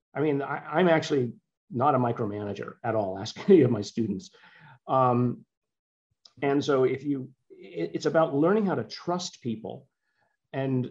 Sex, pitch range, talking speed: male, 110-140 Hz, 160 wpm